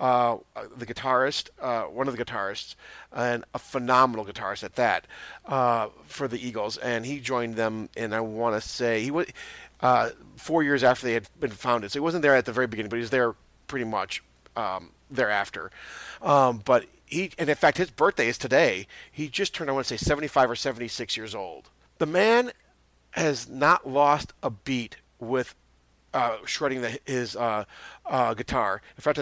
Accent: American